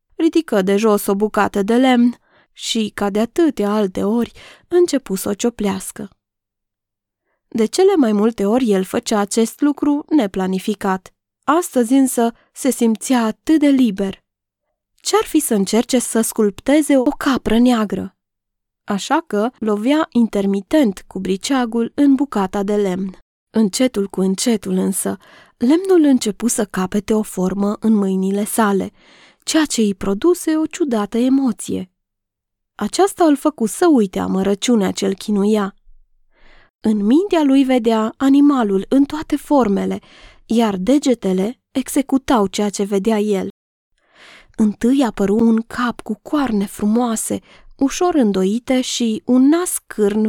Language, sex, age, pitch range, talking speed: Romanian, female, 20-39, 200-265 Hz, 130 wpm